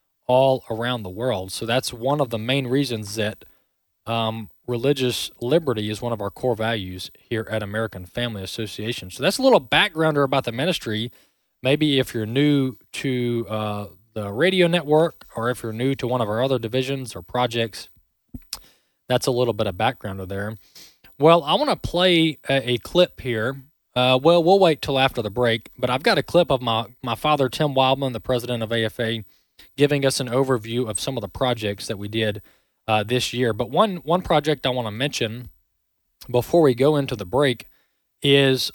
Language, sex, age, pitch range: English, male, 20-39, 110-140 Hz